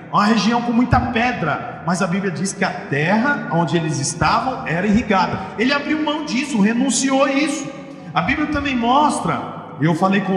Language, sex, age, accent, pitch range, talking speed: Portuguese, male, 40-59, Brazilian, 185-245 Hz, 180 wpm